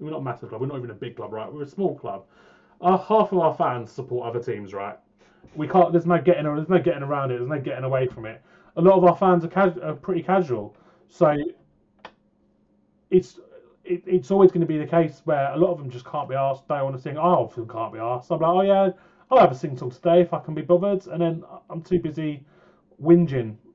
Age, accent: 30-49, British